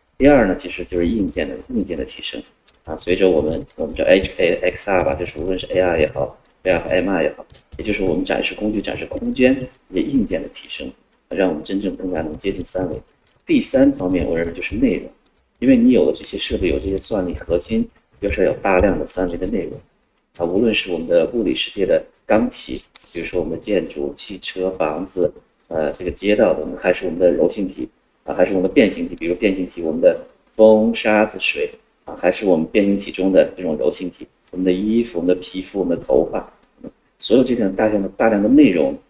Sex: male